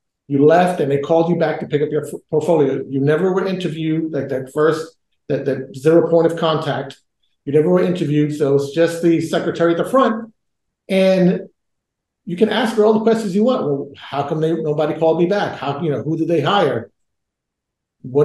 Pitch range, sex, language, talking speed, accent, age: 145-190 Hz, male, English, 205 wpm, American, 50-69